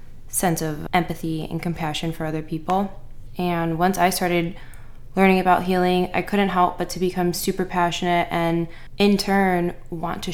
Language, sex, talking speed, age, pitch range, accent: English, female, 165 wpm, 20-39, 150-170 Hz, American